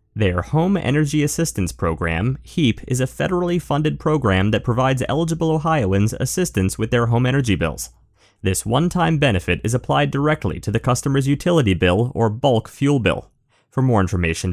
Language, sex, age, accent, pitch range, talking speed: English, male, 30-49, American, 100-145 Hz, 160 wpm